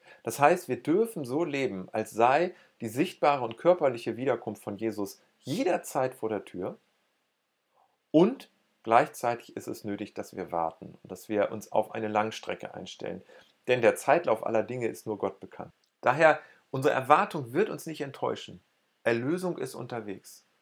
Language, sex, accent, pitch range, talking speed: German, male, German, 110-145 Hz, 155 wpm